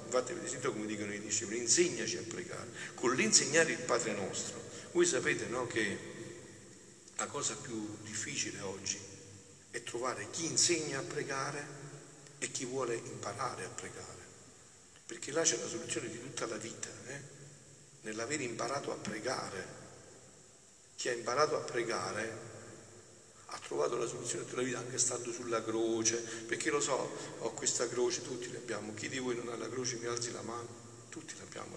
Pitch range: 105-140 Hz